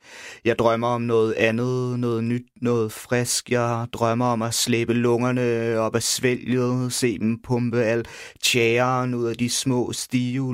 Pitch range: 115-125 Hz